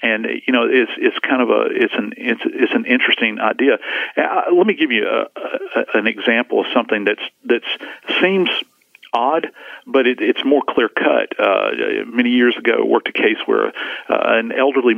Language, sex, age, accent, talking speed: English, male, 50-69, American, 190 wpm